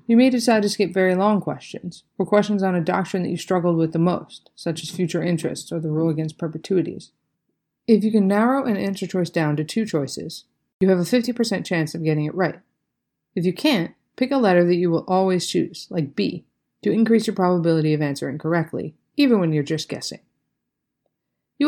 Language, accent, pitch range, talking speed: English, American, 155-195 Hz, 205 wpm